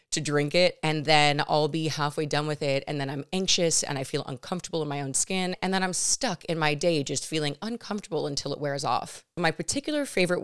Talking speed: 230 wpm